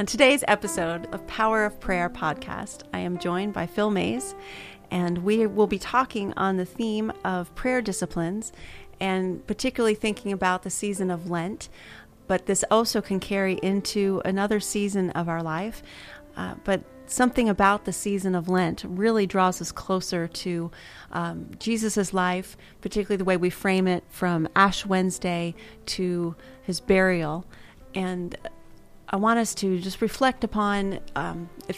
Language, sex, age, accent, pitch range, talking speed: English, female, 30-49, American, 180-210 Hz, 155 wpm